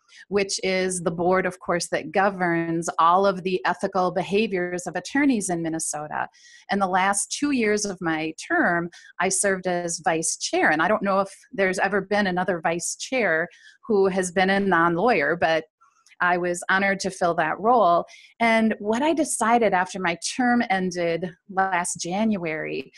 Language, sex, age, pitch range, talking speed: English, female, 30-49, 180-225 Hz, 165 wpm